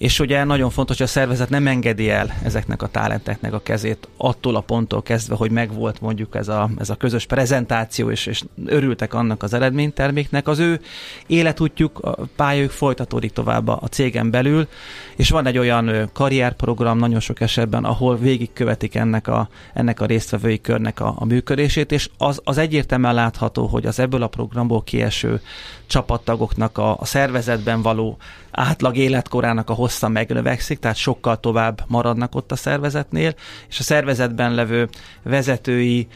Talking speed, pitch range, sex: 160 wpm, 115-130 Hz, male